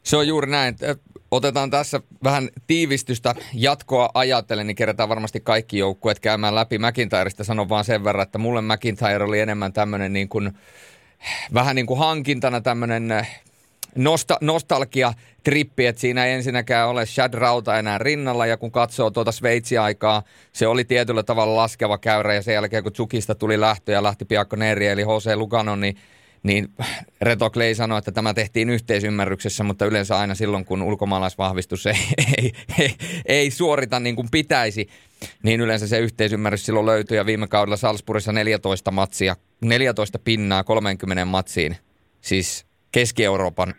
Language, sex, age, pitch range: Finnish, male, 30-49, 105-125 Hz